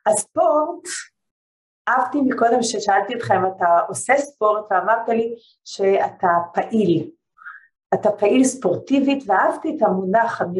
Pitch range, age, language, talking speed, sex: 195-275 Hz, 40-59, Hebrew, 115 wpm, female